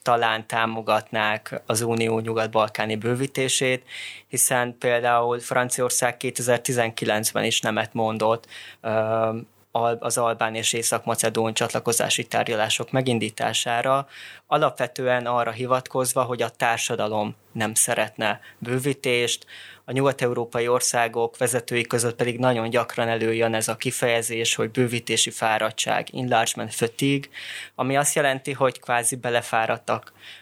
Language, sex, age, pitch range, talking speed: Hungarian, male, 20-39, 115-125 Hz, 105 wpm